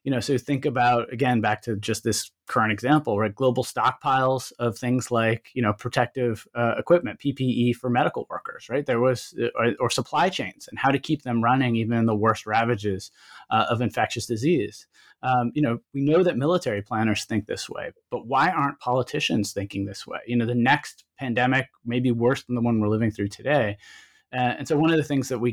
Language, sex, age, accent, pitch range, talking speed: English, male, 30-49, American, 110-135 Hz, 215 wpm